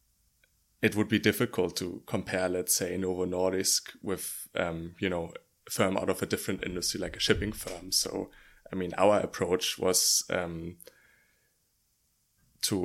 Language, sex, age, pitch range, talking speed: Danish, male, 20-39, 90-100 Hz, 155 wpm